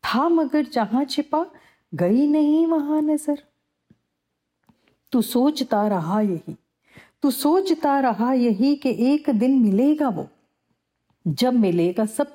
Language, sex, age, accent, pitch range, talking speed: Hindi, female, 40-59, native, 215-285 Hz, 115 wpm